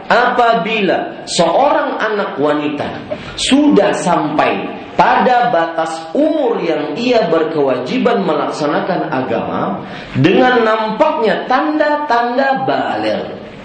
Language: Malay